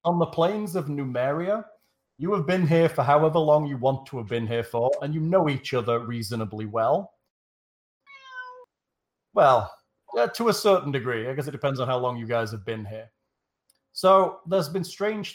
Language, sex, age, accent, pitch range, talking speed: English, male, 40-59, British, 120-170 Hz, 185 wpm